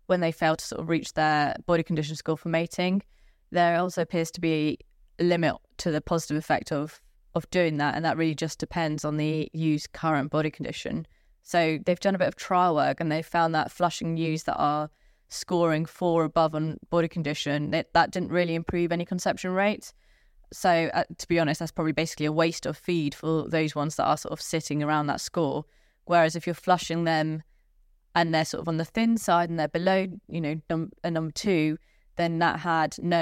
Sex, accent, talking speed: female, British, 210 wpm